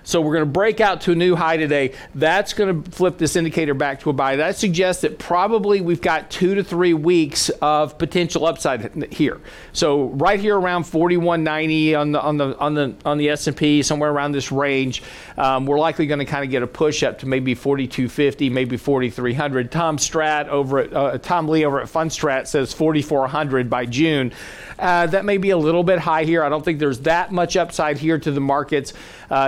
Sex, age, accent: male, 40-59, American